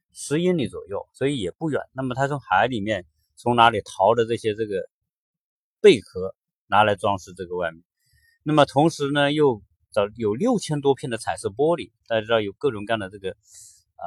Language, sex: Chinese, male